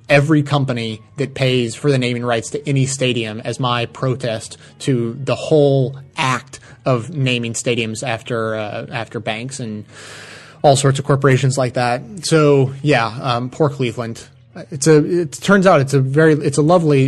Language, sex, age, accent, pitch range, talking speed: English, male, 20-39, American, 130-150 Hz, 170 wpm